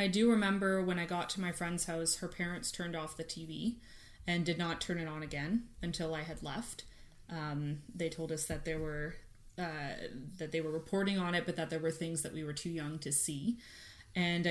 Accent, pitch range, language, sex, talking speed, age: American, 160-185 Hz, English, female, 225 wpm, 20-39